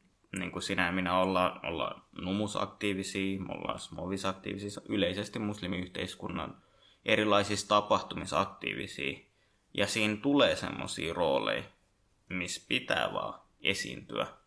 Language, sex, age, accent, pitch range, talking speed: Finnish, male, 20-39, native, 95-105 Hz, 95 wpm